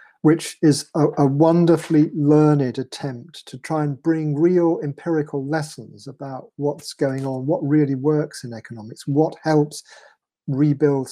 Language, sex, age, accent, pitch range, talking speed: English, male, 40-59, British, 130-150 Hz, 140 wpm